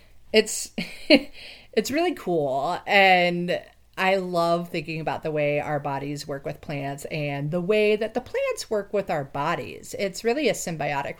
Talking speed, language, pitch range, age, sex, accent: 160 wpm, English, 155-225 Hz, 40-59, female, American